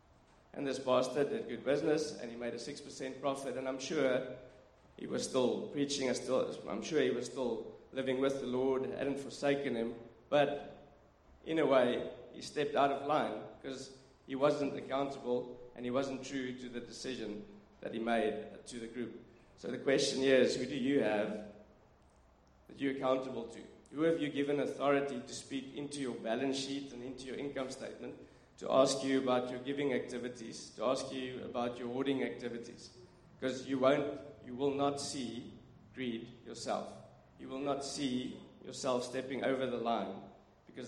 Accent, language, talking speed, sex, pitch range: South African, English, 175 wpm, male, 120-135 Hz